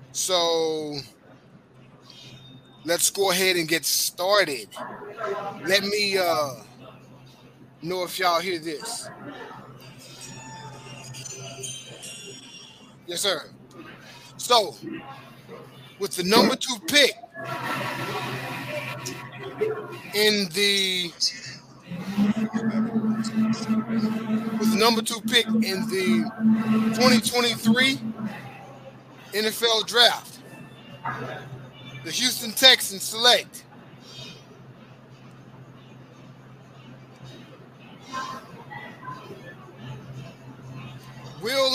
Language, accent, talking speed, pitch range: English, American, 55 wpm, 135-220 Hz